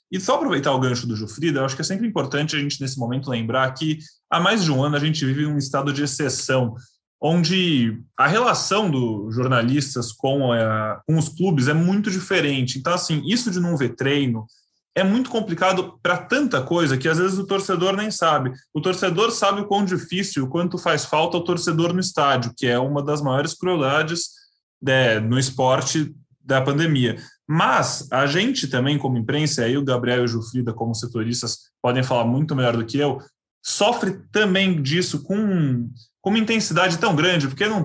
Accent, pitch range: Brazilian, 130-185 Hz